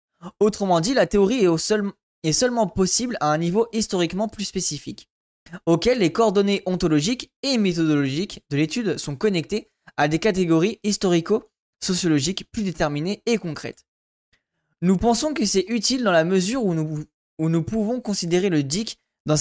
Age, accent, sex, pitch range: 20-39, French, male, 160-210 Hz